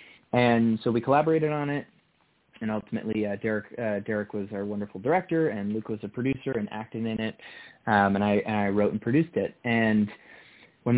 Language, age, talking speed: English, 20-39, 195 wpm